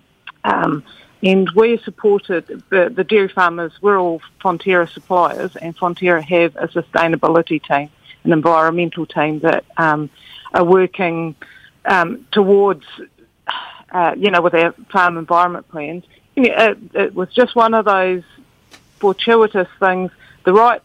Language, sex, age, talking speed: English, female, 50-69, 135 wpm